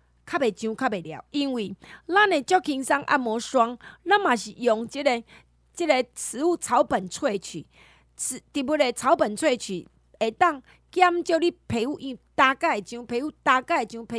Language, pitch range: Chinese, 210-305 Hz